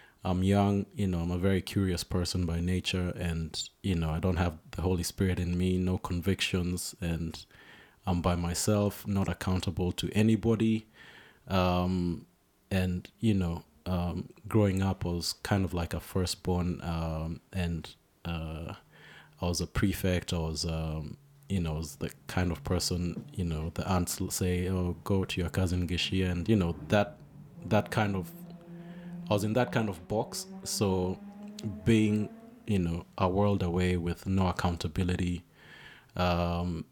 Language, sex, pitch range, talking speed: English, male, 85-100 Hz, 165 wpm